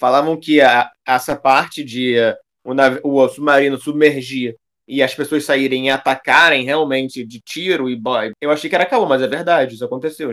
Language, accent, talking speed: Portuguese, Brazilian, 190 wpm